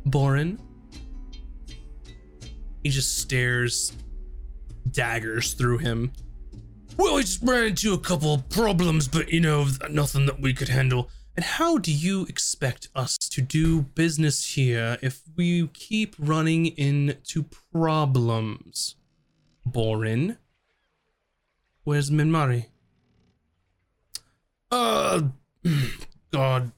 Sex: male